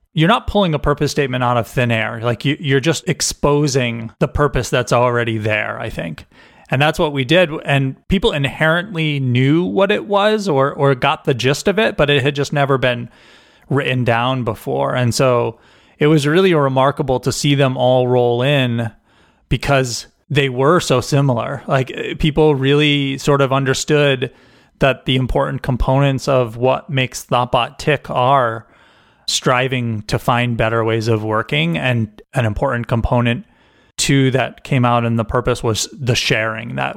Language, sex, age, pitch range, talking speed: English, male, 30-49, 120-140 Hz, 170 wpm